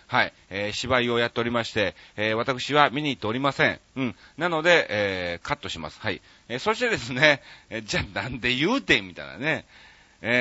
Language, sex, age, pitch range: Japanese, male, 40-59, 100-145 Hz